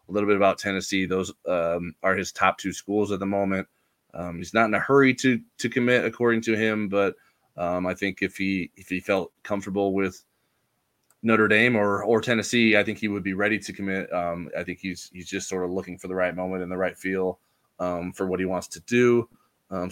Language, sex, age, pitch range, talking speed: English, male, 20-39, 90-105 Hz, 230 wpm